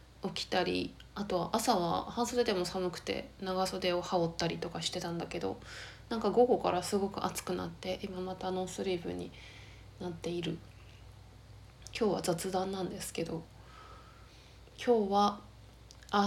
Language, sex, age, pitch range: Japanese, female, 20-39, 165-210 Hz